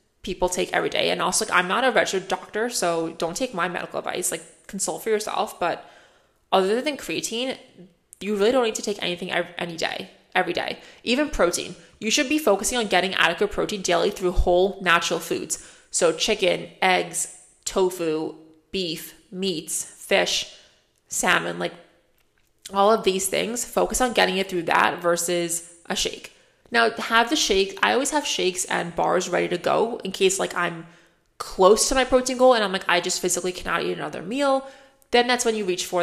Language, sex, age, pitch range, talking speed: English, female, 20-39, 180-255 Hz, 190 wpm